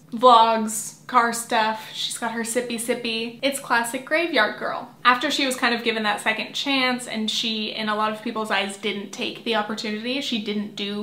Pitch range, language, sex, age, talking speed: 220-260 Hz, English, female, 20-39, 195 wpm